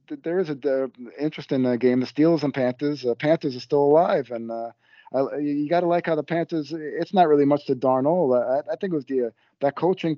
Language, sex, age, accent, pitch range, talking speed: English, male, 40-59, American, 120-145 Hz, 240 wpm